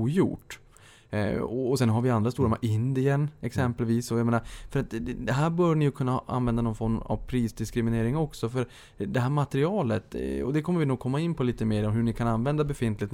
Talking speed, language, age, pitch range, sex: 210 wpm, Swedish, 20-39, 105-130 Hz, male